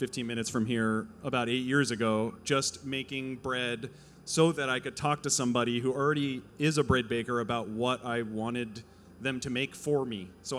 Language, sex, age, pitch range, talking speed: English, male, 30-49, 115-135 Hz, 195 wpm